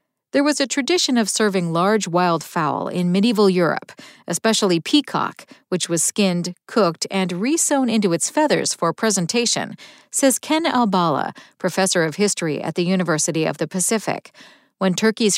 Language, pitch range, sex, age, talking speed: English, 175-250 Hz, female, 50-69, 150 wpm